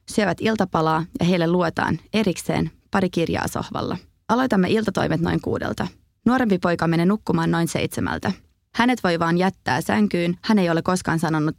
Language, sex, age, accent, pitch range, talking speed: Finnish, female, 20-39, native, 165-200 Hz, 150 wpm